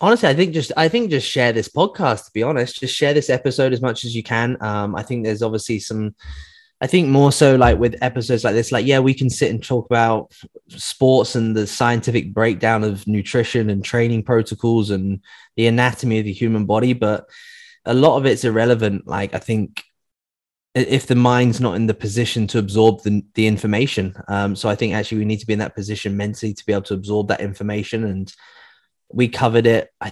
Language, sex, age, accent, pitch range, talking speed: English, male, 20-39, British, 105-125 Hz, 215 wpm